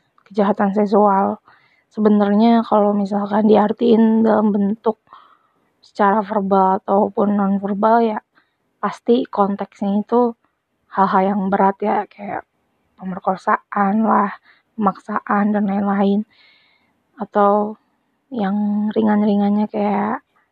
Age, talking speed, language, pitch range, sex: 20-39, 90 wpm, Indonesian, 200-220 Hz, female